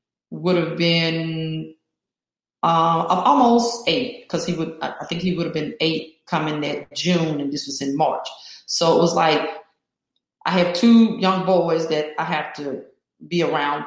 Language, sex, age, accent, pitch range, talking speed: English, female, 30-49, American, 155-190 Hz, 175 wpm